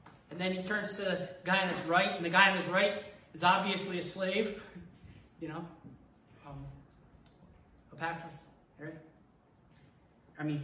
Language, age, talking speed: English, 30-49, 150 wpm